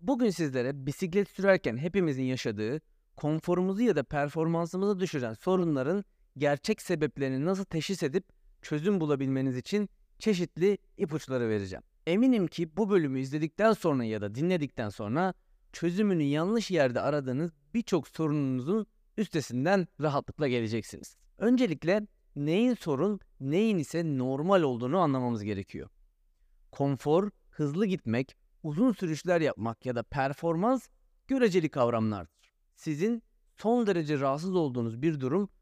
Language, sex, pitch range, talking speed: Turkish, male, 135-195 Hz, 115 wpm